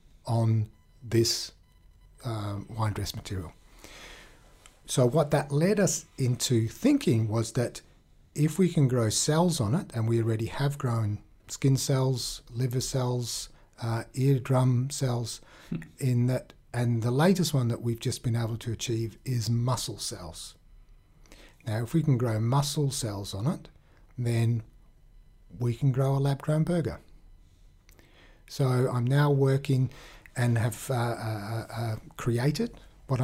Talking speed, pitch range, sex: 145 wpm, 110-135 Hz, male